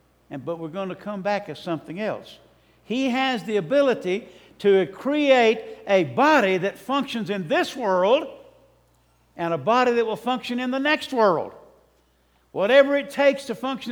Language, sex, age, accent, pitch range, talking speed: English, male, 60-79, American, 190-245 Hz, 160 wpm